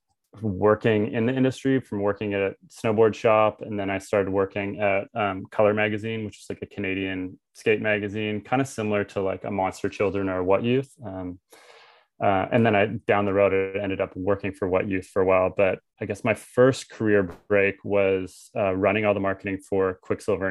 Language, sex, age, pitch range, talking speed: English, male, 20-39, 95-105 Hz, 200 wpm